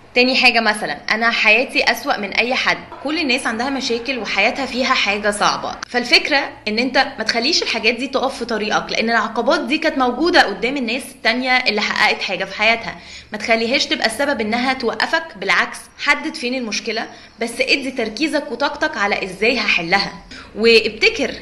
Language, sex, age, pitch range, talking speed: Arabic, female, 20-39, 215-270 Hz, 165 wpm